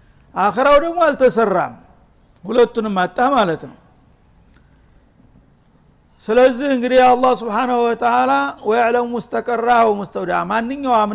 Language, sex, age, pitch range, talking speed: Amharic, male, 60-79, 190-245 Hz, 90 wpm